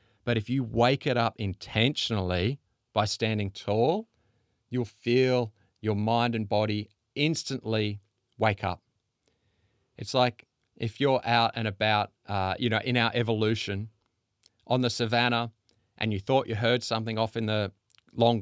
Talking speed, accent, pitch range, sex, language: 145 wpm, Australian, 105-125 Hz, male, English